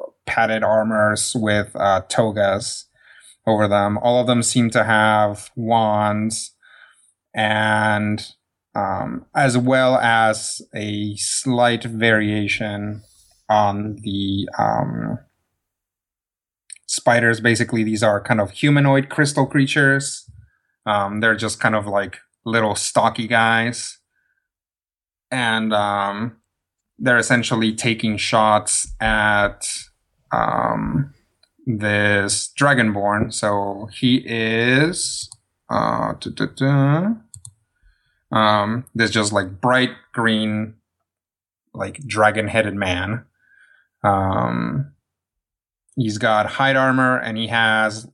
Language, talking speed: English, 95 wpm